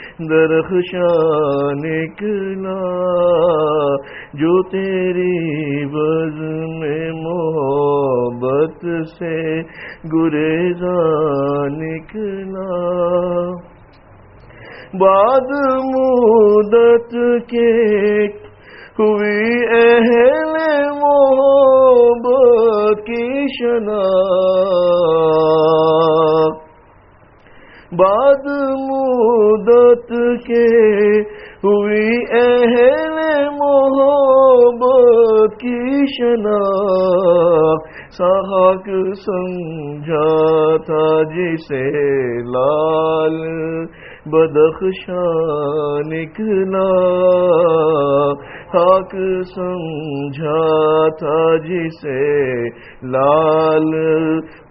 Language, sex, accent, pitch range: English, male, Indian, 155-225 Hz